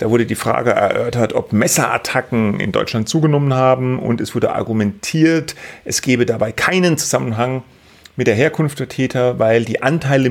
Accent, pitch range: German, 110-140 Hz